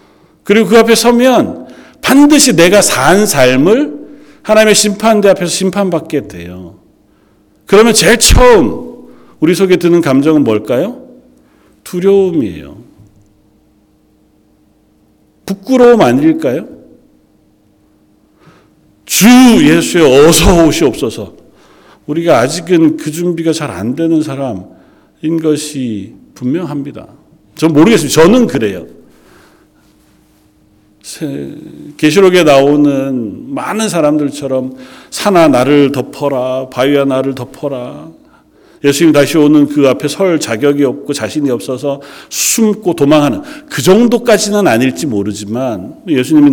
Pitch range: 120-180 Hz